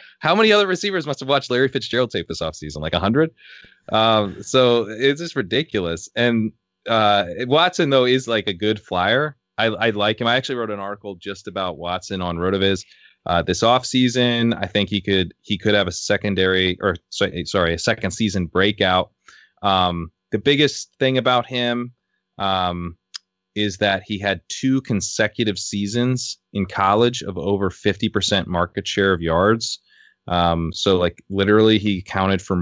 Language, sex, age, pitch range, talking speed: English, male, 20-39, 90-115 Hz, 175 wpm